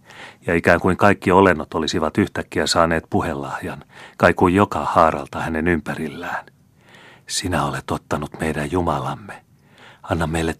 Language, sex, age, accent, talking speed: Finnish, male, 40-59, native, 120 wpm